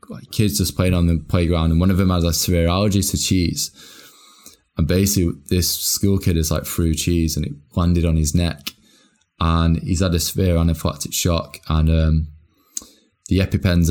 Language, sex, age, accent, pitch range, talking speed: English, male, 20-39, British, 80-90 Hz, 185 wpm